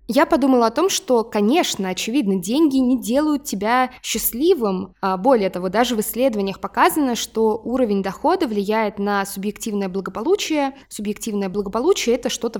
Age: 20-39